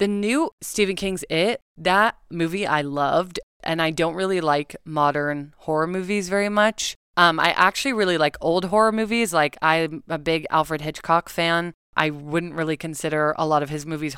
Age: 20-39